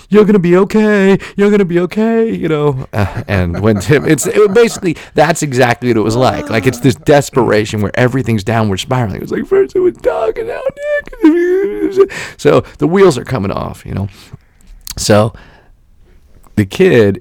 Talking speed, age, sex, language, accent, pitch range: 185 wpm, 40-59, male, English, American, 85-140 Hz